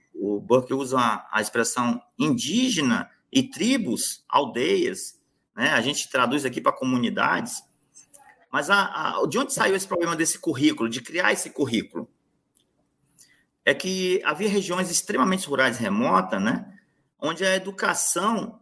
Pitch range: 130-200 Hz